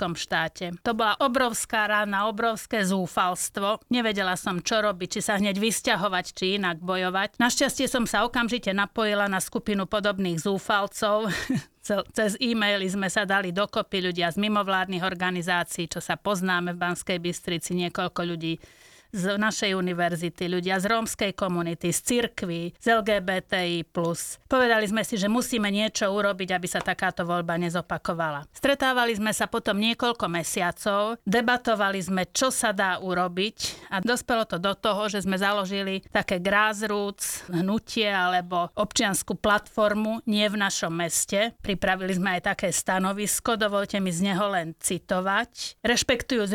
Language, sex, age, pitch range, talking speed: Slovak, female, 30-49, 180-220 Hz, 140 wpm